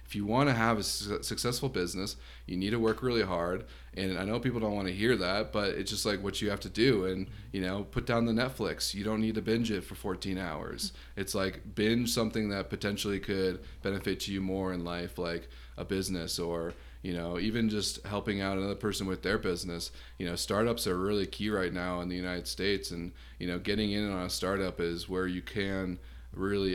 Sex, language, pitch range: male, English, 90-100 Hz